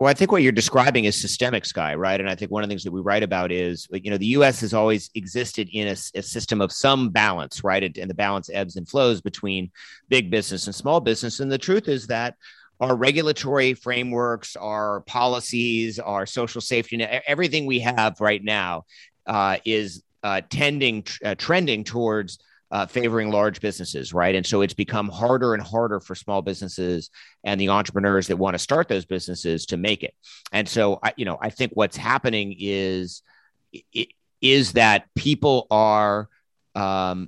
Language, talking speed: English, 185 wpm